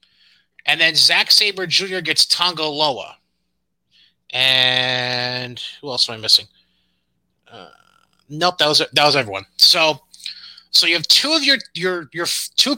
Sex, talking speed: male, 150 wpm